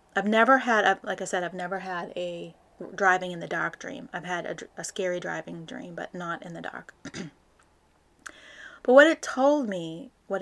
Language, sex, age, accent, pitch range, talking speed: English, female, 30-49, American, 180-215 Hz, 190 wpm